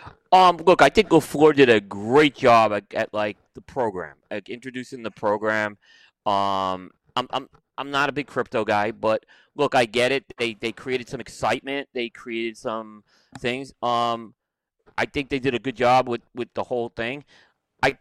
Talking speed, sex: 185 wpm, male